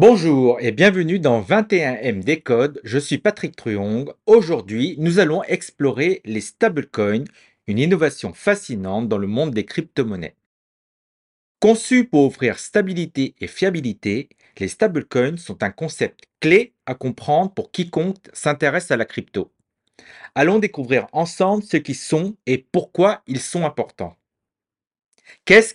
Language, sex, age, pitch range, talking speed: French, male, 40-59, 120-190 Hz, 130 wpm